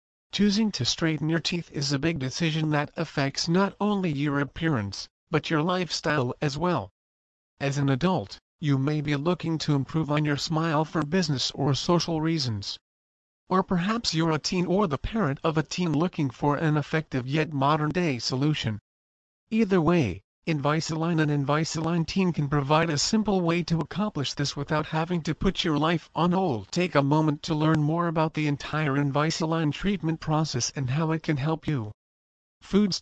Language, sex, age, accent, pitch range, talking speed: English, male, 50-69, American, 135-165 Hz, 175 wpm